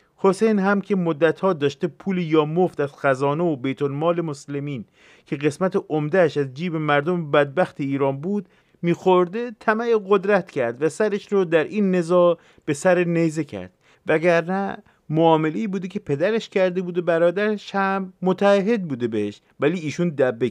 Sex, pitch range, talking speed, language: male, 135-180 Hz, 155 wpm, Persian